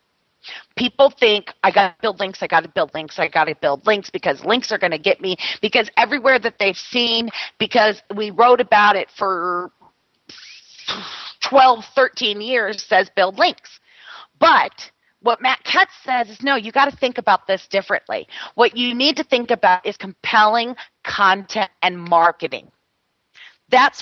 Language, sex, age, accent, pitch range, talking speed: English, female, 40-59, American, 195-245 Hz, 160 wpm